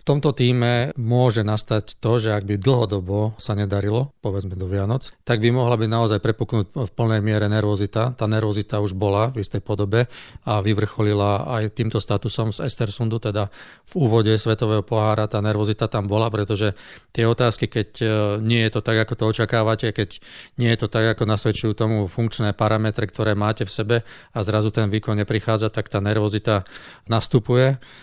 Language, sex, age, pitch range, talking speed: Slovak, male, 40-59, 105-115 Hz, 175 wpm